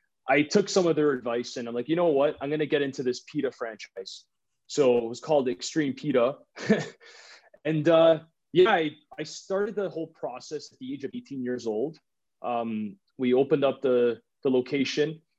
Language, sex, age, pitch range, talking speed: English, male, 20-39, 125-165 Hz, 190 wpm